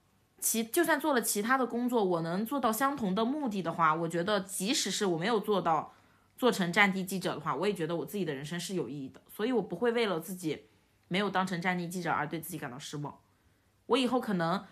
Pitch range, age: 165-220 Hz, 20-39